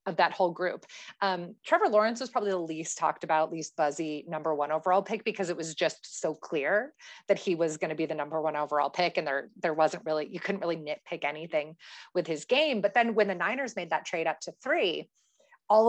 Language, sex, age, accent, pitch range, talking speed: English, female, 30-49, American, 155-205 Hz, 230 wpm